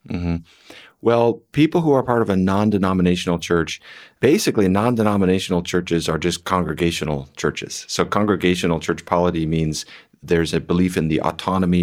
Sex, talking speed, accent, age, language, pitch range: male, 145 wpm, American, 40-59, English, 80-95 Hz